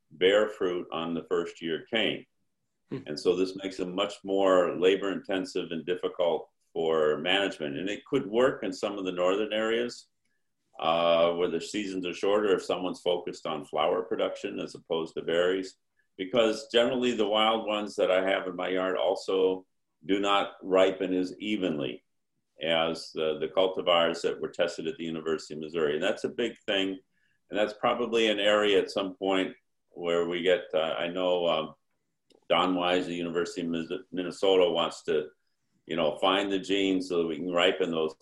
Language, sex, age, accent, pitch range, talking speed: English, male, 50-69, American, 85-105 Hz, 175 wpm